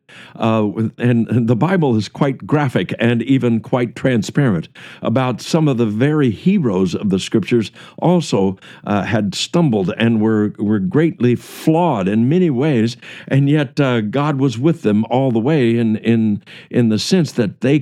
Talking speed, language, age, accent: 170 wpm, English, 60-79, American